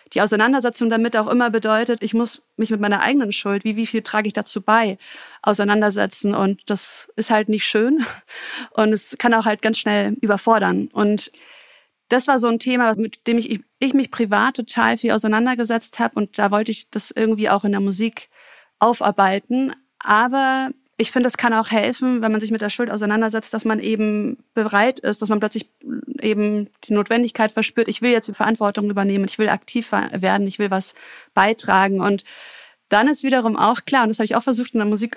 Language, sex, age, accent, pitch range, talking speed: German, female, 30-49, German, 205-235 Hz, 200 wpm